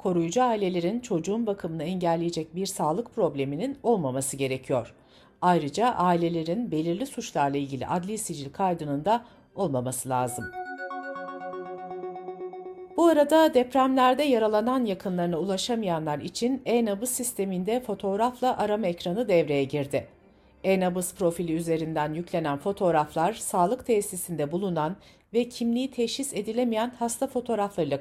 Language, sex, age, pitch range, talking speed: Turkish, female, 60-79, 150-230 Hz, 105 wpm